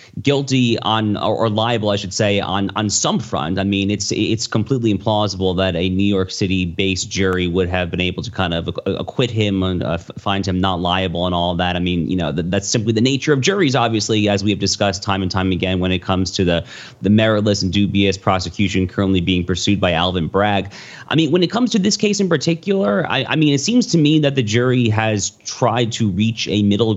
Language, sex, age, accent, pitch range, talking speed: English, male, 30-49, American, 95-120 Hz, 235 wpm